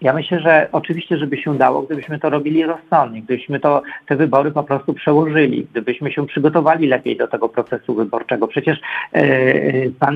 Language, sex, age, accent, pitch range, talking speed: Polish, male, 50-69, native, 140-175 Hz, 160 wpm